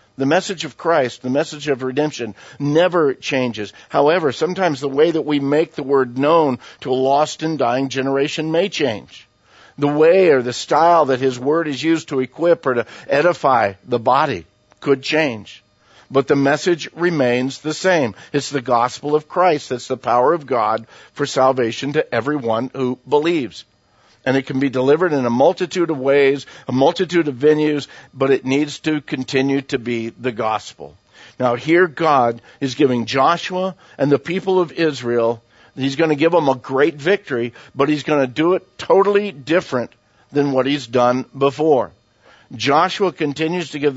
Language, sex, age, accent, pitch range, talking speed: English, male, 50-69, American, 130-155 Hz, 175 wpm